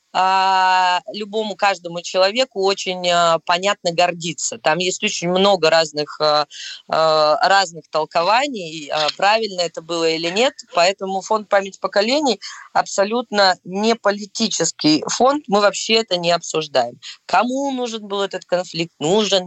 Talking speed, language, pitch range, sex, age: 115 wpm, Russian, 170-215 Hz, female, 20-39